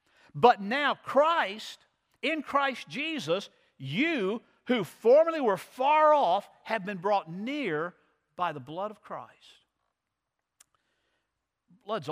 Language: English